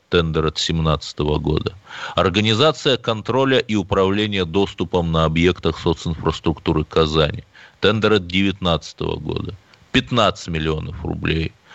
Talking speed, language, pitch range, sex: 100 wpm, Russian, 85-110 Hz, male